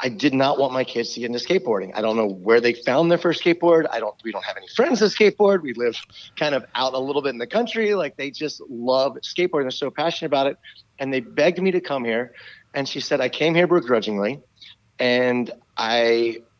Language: English